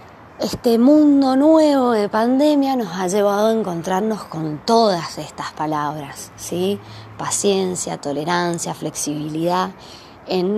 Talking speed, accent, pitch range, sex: 110 wpm, Argentinian, 155-205 Hz, female